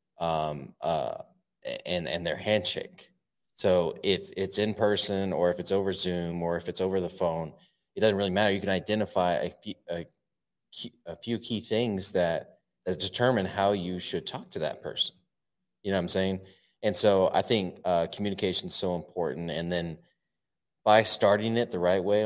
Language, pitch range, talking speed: English, 85-100 Hz, 185 wpm